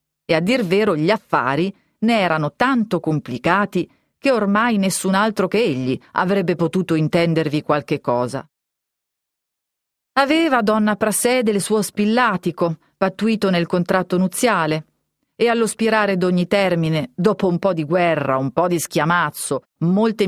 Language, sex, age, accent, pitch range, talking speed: Italian, female, 40-59, native, 160-215 Hz, 135 wpm